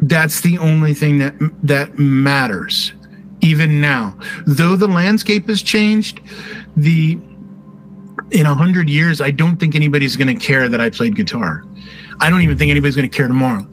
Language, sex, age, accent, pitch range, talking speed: English, male, 40-59, American, 140-195 Hz, 160 wpm